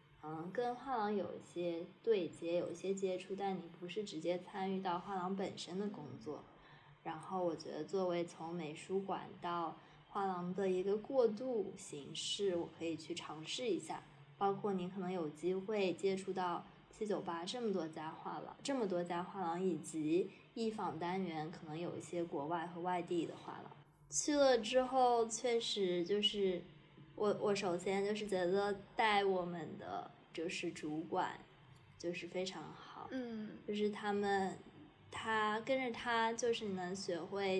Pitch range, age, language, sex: 170-210 Hz, 20-39, Chinese, female